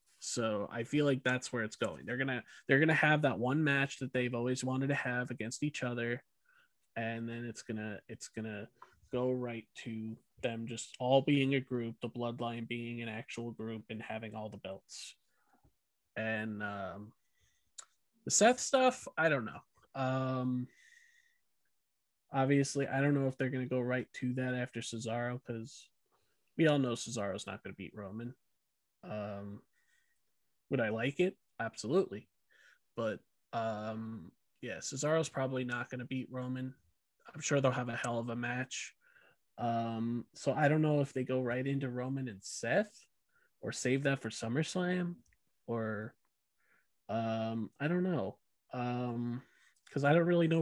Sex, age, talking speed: male, 20-39, 160 wpm